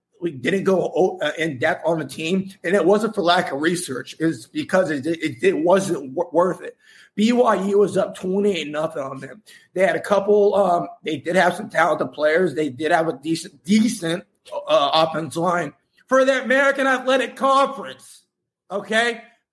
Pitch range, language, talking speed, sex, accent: 195-270 Hz, English, 175 wpm, male, American